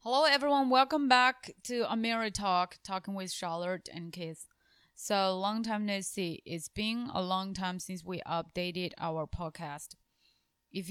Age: 20-39